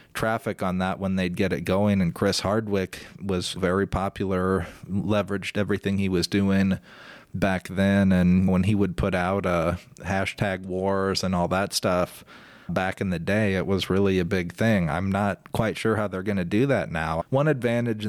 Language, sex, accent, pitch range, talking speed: English, male, American, 95-105 Hz, 190 wpm